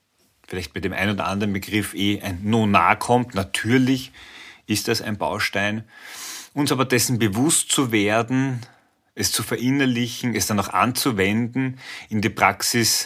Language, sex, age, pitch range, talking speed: German, male, 30-49, 95-115 Hz, 145 wpm